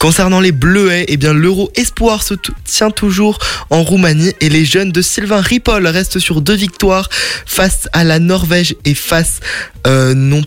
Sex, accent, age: male, French, 20-39